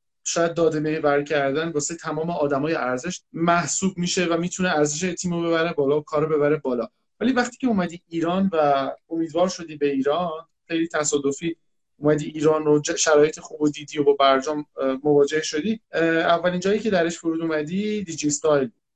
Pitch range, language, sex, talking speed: 150-180 Hz, Persian, male, 165 wpm